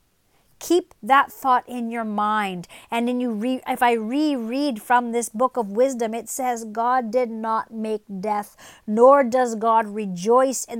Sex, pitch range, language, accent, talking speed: female, 215-260 Hz, English, American, 160 wpm